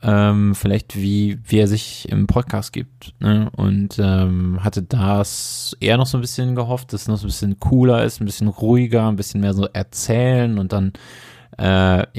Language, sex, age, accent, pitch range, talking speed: German, male, 20-39, German, 100-120 Hz, 185 wpm